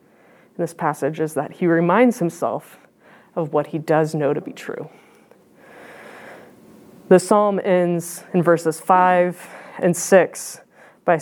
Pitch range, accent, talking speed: 160-195 Hz, American, 130 wpm